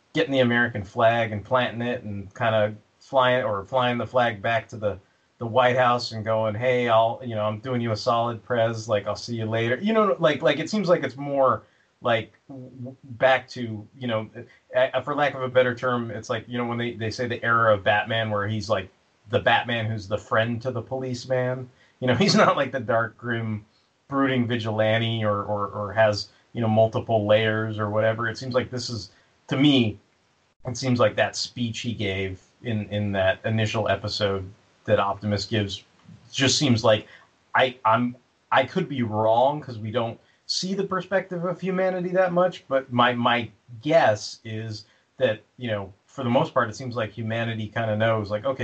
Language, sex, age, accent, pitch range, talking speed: English, male, 30-49, American, 110-125 Hz, 205 wpm